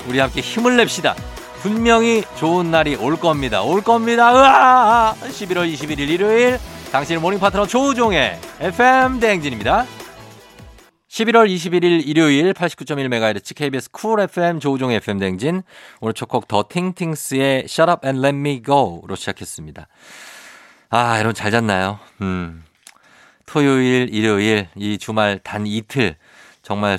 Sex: male